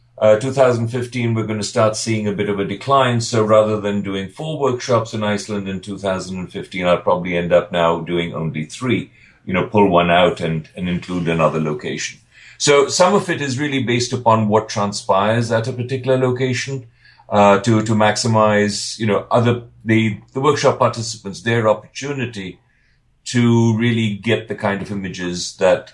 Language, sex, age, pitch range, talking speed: English, male, 50-69, 95-120 Hz, 175 wpm